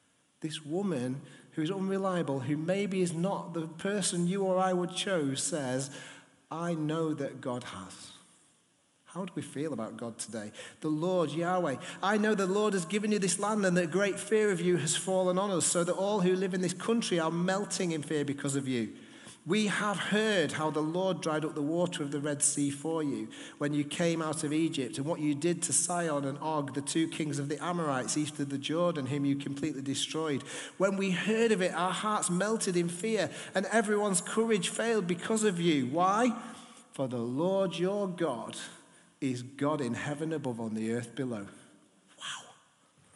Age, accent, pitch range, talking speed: 40-59, British, 145-195 Hz, 200 wpm